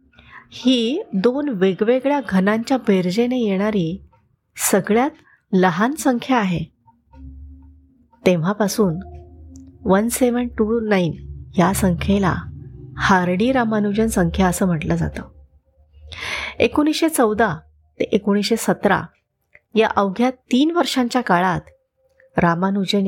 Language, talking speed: Marathi, 85 wpm